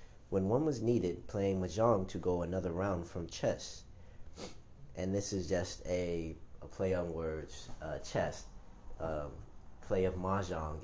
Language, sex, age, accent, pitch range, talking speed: English, male, 30-49, American, 80-100 Hz, 150 wpm